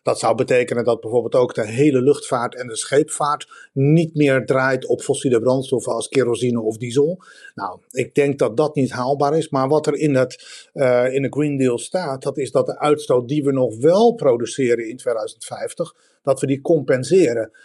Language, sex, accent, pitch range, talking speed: Dutch, male, Dutch, 125-160 Hz, 190 wpm